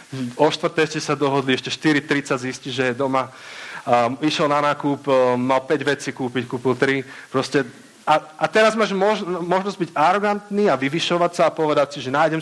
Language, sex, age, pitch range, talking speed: Czech, male, 40-59, 130-155 Hz, 190 wpm